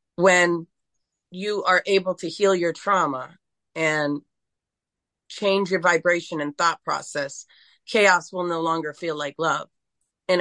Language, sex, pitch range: English, female, 165-230 Hz